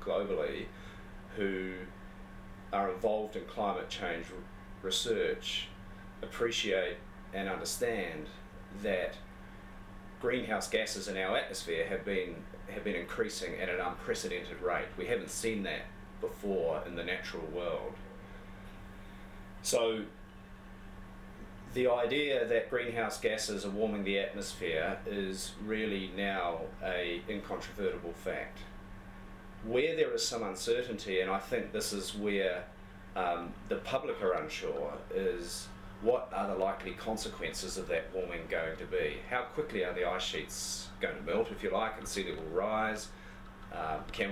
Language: English